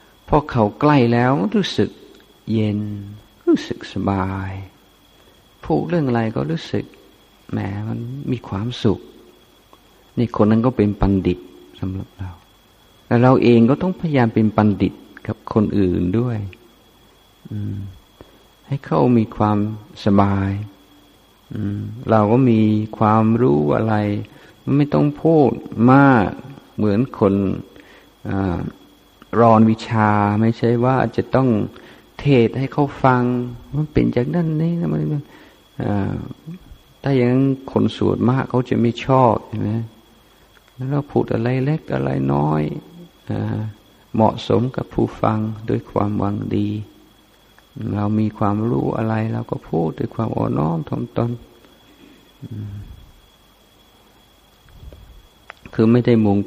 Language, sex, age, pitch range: Thai, male, 50-69, 100-125 Hz